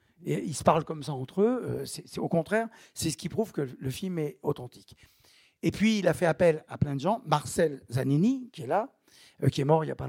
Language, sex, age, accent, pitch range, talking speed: French, male, 60-79, French, 145-200 Hz, 245 wpm